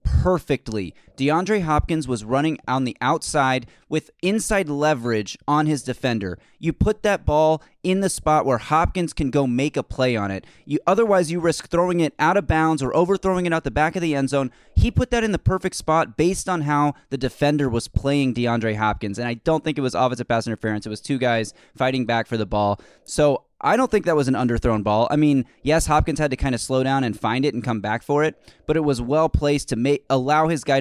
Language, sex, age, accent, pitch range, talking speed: English, male, 20-39, American, 120-155 Hz, 230 wpm